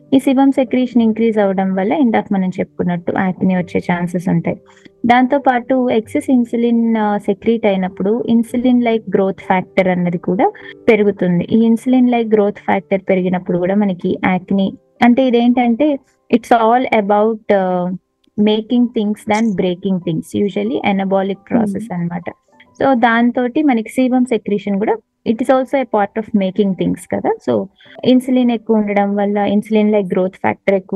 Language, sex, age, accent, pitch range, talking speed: Telugu, female, 20-39, native, 185-235 Hz, 140 wpm